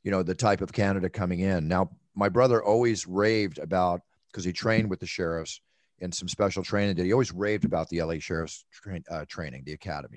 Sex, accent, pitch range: male, American, 85-105 Hz